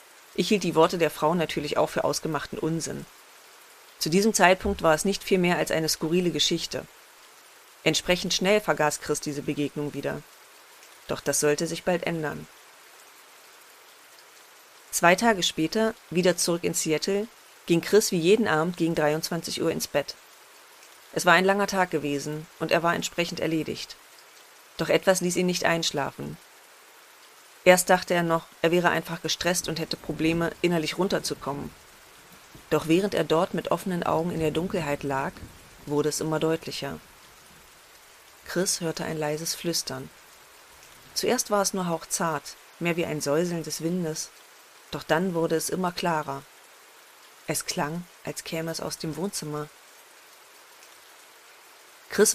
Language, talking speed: German, 150 wpm